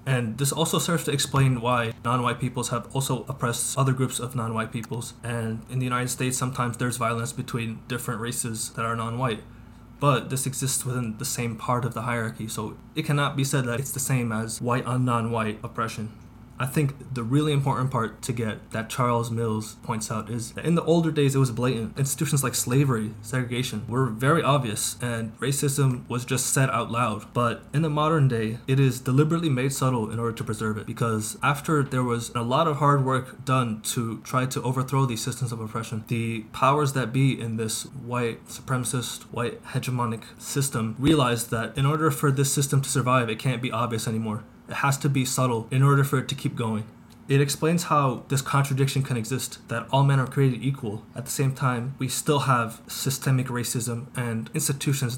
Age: 20-39